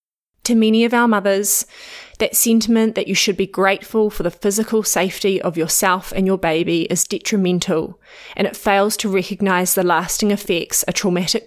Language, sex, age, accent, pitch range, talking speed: English, female, 20-39, Australian, 175-215 Hz, 175 wpm